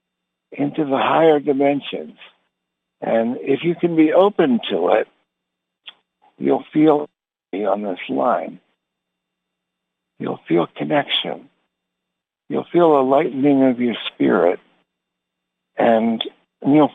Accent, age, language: American, 60-79, English